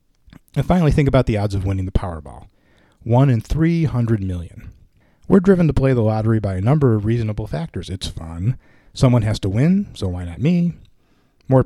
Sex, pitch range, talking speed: male, 100-140 Hz, 190 wpm